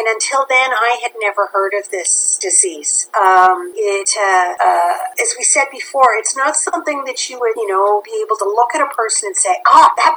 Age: 50-69